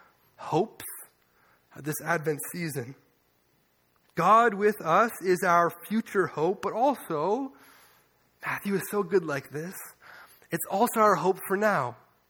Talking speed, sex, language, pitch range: 125 wpm, male, English, 150-205 Hz